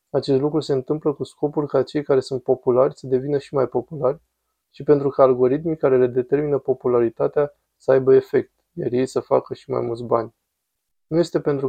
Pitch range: 125-140 Hz